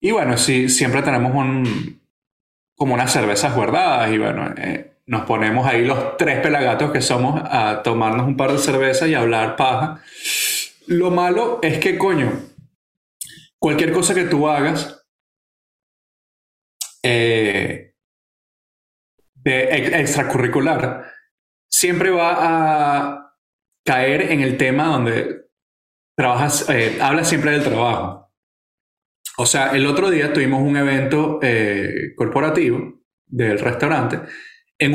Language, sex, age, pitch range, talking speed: Spanish, male, 30-49, 125-165 Hz, 120 wpm